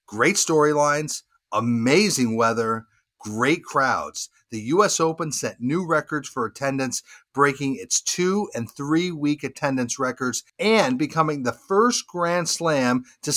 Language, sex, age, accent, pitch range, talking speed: English, male, 50-69, American, 125-165 Hz, 125 wpm